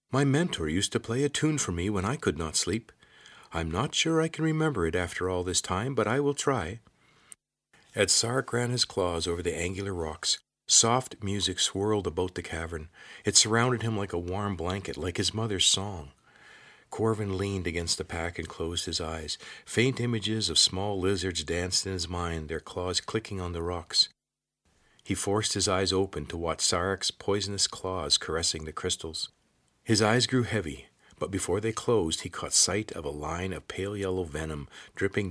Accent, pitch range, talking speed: American, 85-110 Hz, 190 wpm